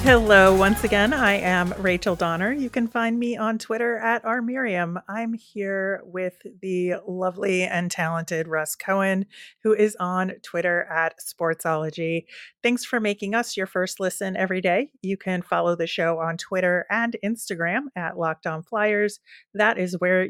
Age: 30-49